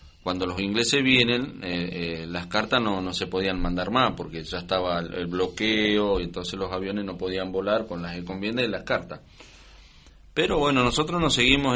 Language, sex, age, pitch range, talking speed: Spanish, male, 40-59, 90-115 Hz, 195 wpm